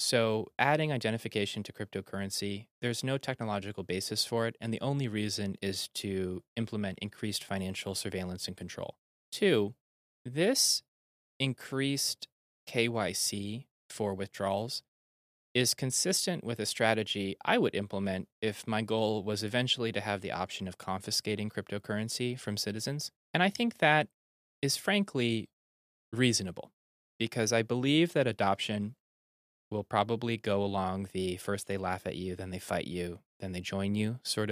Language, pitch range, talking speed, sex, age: English, 95-120 Hz, 145 wpm, male, 20-39